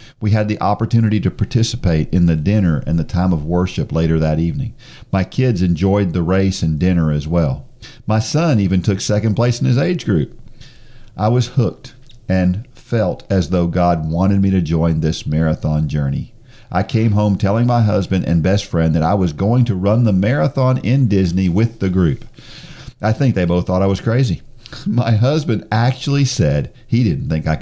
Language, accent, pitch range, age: English, American, 90-125 Hz, 50-69